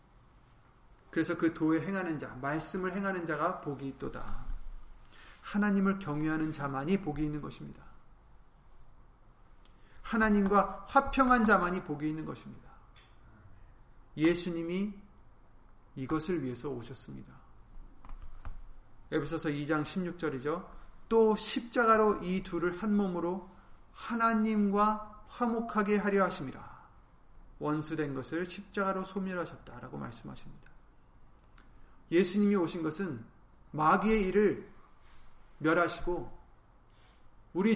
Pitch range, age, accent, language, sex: 135-195 Hz, 30-49, native, Korean, male